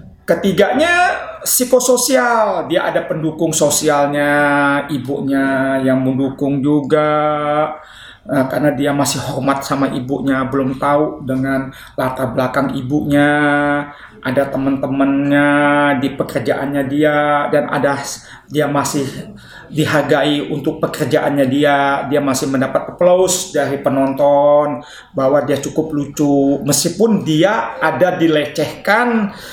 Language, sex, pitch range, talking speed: Indonesian, male, 140-185 Hz, 100 wpm